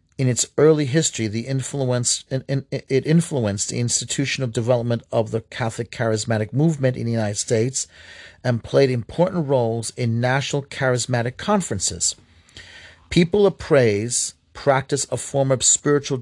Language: English